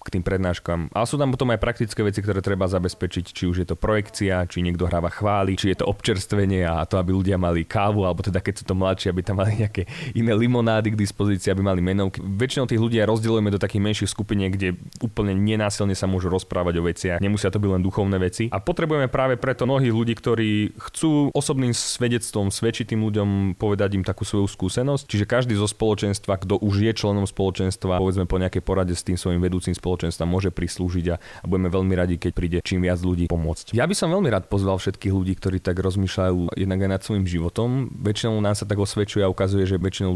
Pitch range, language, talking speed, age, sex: 90-110 Hz, Slovak, 210 wpm, 30-49, male